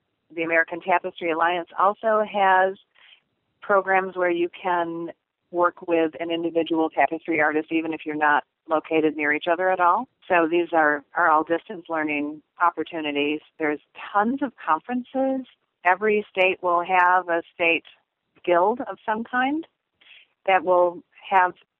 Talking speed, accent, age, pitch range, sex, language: 140 wpm, American, 40-59, 155-190 Hz, female, English